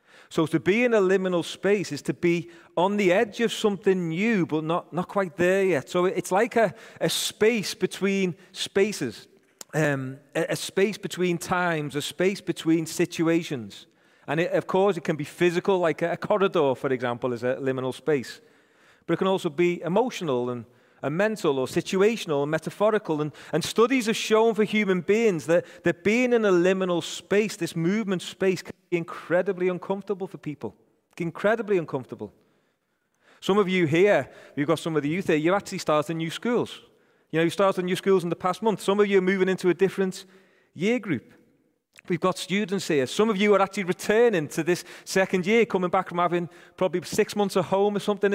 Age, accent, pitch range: 30-49, British, 165-205 Hz